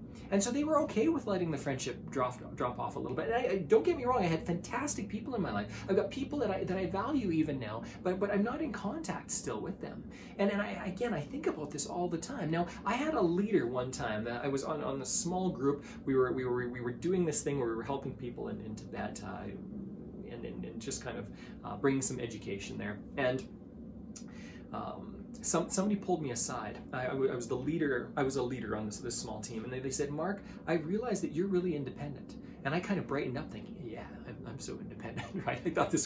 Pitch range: 155-220 Hz